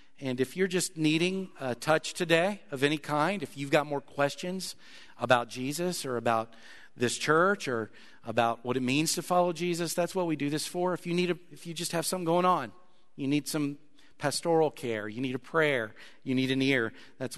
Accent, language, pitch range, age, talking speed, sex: American, English, 140-215 Hz, 50-69, 210 wpm, male